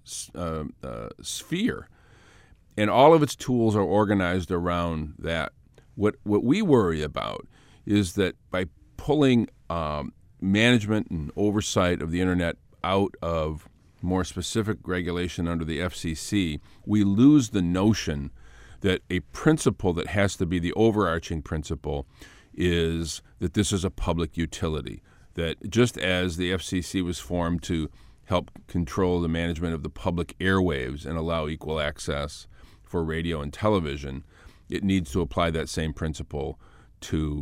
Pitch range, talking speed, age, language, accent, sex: 80-105 Hz, 145 wpm, 50-69, English, American, male